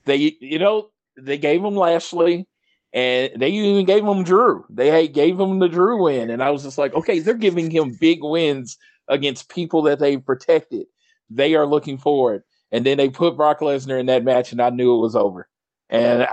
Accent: American